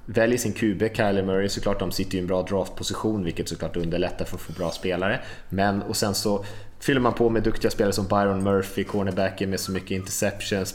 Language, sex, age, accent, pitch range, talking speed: Swedish, male, 20-39, Norwegian, 95-110 Hz, 210 wpm